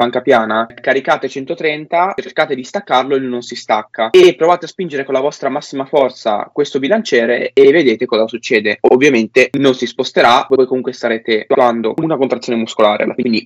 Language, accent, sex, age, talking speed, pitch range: Italian, native, male, 20-39, 170 wpm, 120-145 Hz